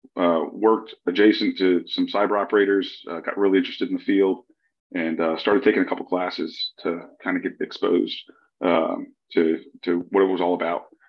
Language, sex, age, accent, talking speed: English, male, 30-49, American, 185 wpm